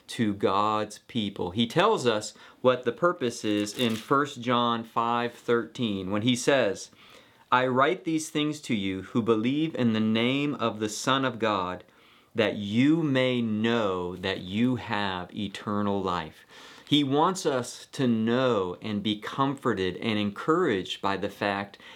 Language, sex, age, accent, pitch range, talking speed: English, male, 40-59, American, 105-135 Hz, 155 wpm